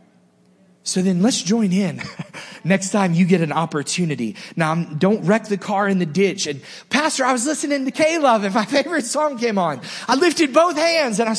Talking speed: 205 wpm